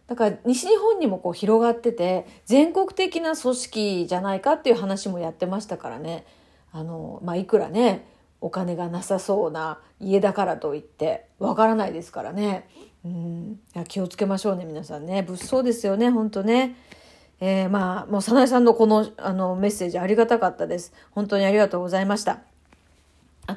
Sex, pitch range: female, 190-270 Hz